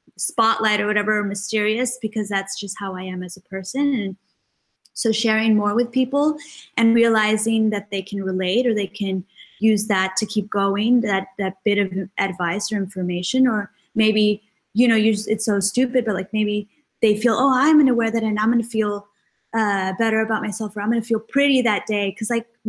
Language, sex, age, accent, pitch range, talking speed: English, female, 20-39, American, 195-230 Hz, 210 wpm